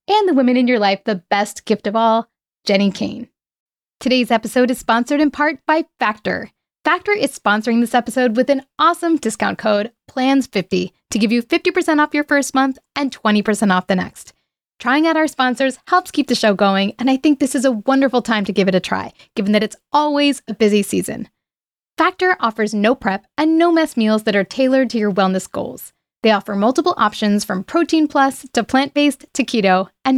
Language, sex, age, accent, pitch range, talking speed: English, female, 10-29, American, 220-290 Hz, 205 wpm